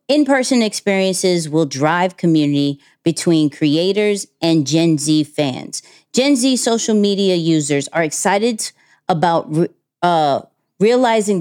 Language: English